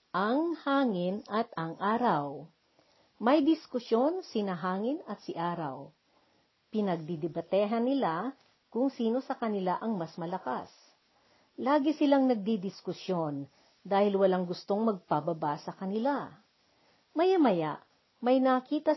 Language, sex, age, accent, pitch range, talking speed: Filipino, female, 50-69, native, 185-255 Hz, 105 wpm